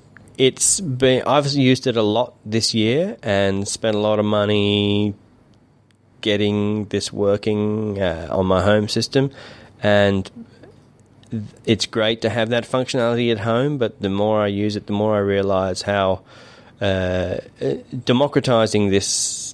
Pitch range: 90-115 Hz